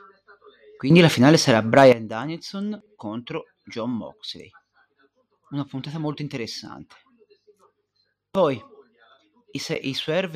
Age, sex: 30-49, male